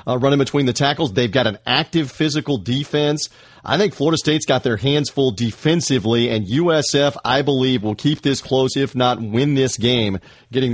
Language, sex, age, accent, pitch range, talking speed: English, male, 40-59, American, 120-150 Hz, 190 wpm